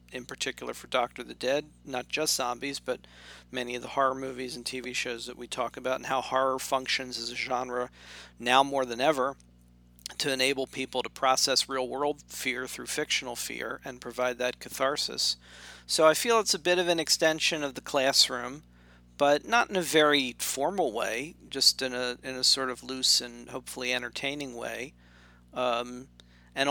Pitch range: 125-145 Hz